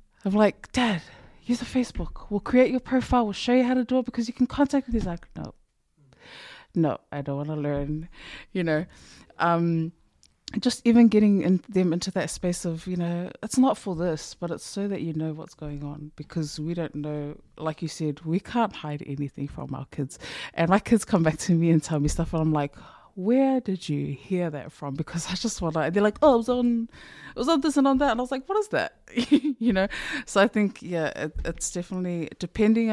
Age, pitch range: 20-39, 150-205 Hz